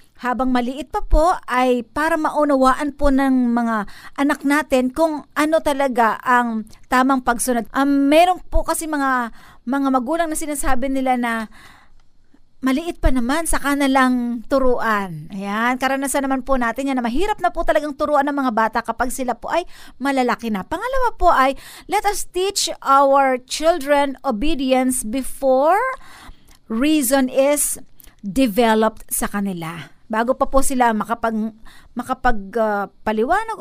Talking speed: 140 wpm